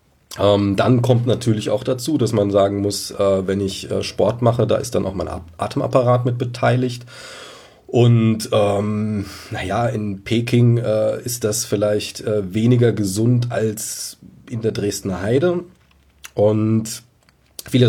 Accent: German